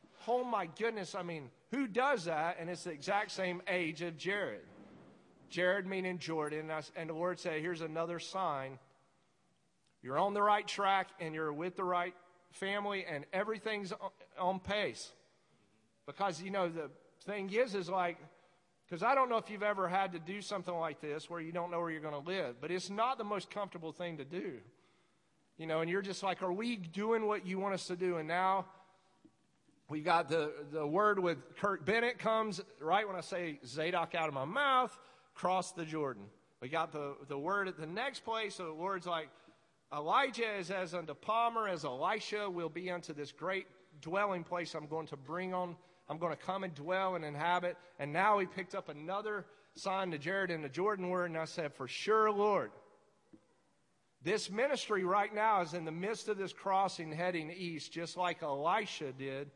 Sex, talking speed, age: male, 195 wpm, 40-59